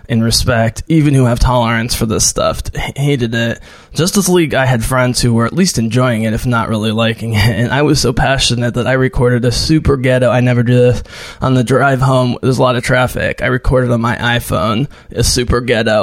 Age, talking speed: 20-39, 220 wpm